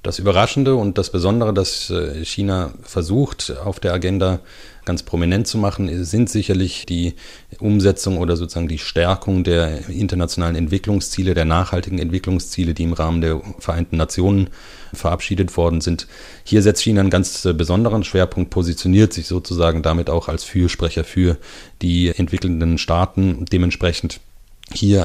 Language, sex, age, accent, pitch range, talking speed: English, male, 30-49, German, 85-95 Hz, 140 wpm